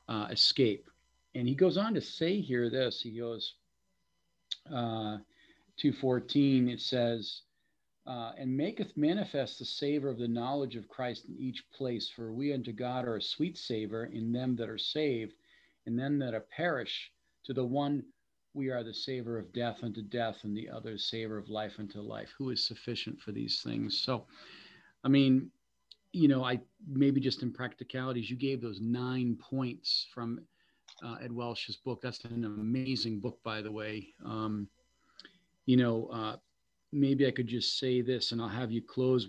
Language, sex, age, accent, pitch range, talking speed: English, male, 50-69, American, 115-135 Hz, 175 wpm